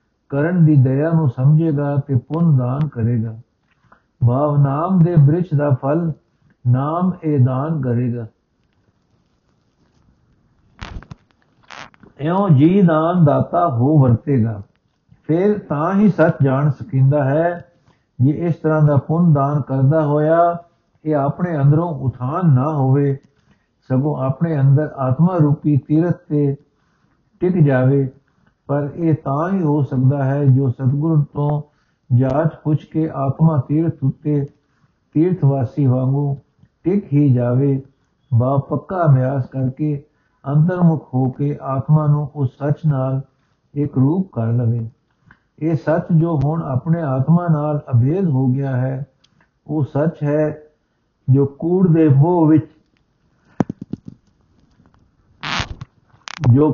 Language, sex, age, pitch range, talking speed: Punjabi, male, 60-79, 135-160 Hz, 115 wpm